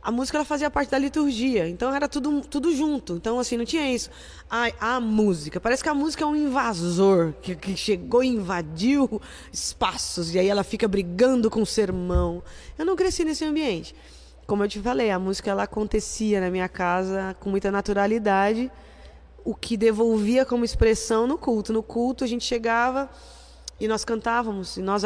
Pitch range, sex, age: 195-250 Hz, female, 20-39